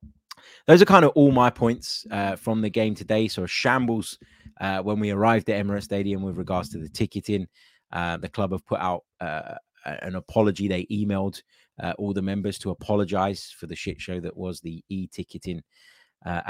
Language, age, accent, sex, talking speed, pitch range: English, 20-39, British, male, 195 wpm, 95-110 Hz